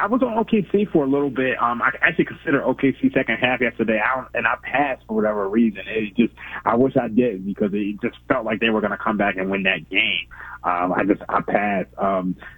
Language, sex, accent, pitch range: English, male, American, 110-140 Hz